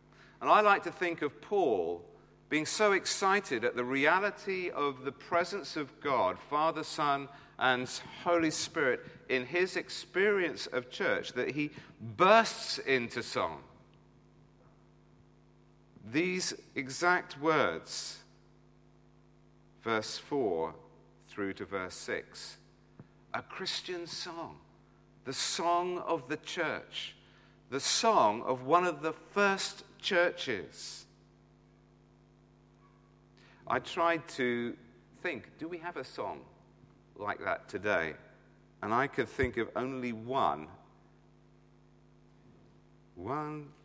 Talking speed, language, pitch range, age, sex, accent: 105 wpm, English, 125-170 Hz, 50-69, male, British